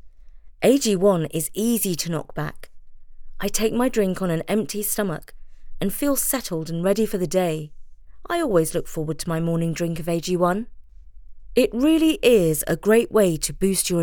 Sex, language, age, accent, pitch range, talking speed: female, English, 30-49, British, 160-230 Hz, 175 wpm